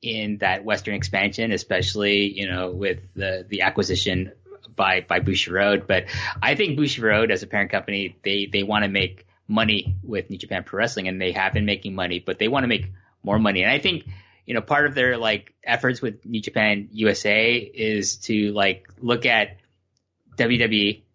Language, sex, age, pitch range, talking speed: English, male, 20-39, 100-120 Hz, 195 wpm